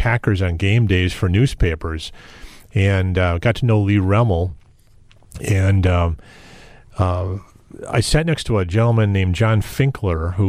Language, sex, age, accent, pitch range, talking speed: English, male, 40-59, American, 95-115 Hz, 150 wpm